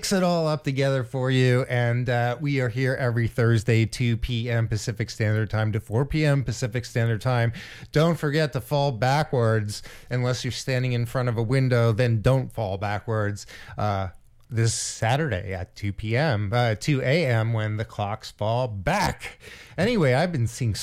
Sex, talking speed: male, 165 wpm